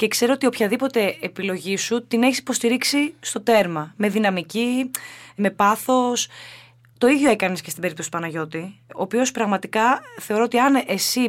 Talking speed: 160 wpm